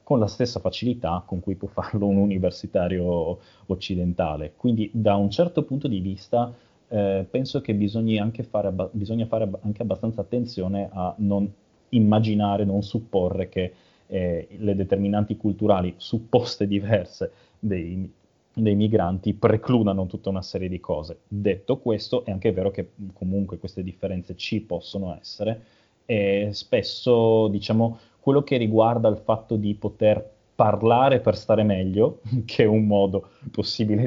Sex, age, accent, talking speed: male, 20-39, native, 140 wpm